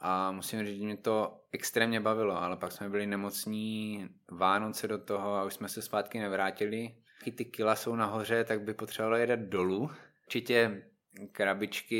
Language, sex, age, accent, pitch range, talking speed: Czech, male, 20-39, native, 95-105 Hz, 170 wpm